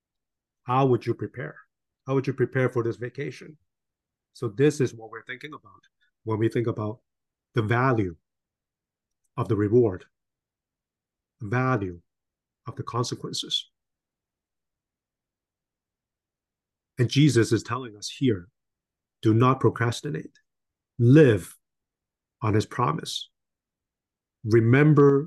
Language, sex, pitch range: Chinese, male, 105-130 Hz